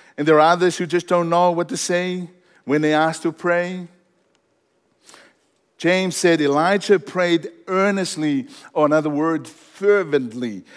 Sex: male